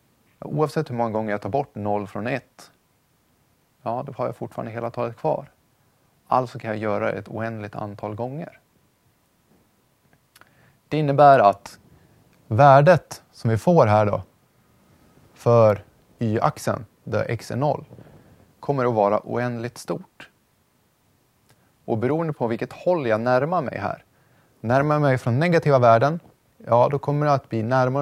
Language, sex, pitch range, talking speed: Swedish, male, 105-135 Hz, 145 wpm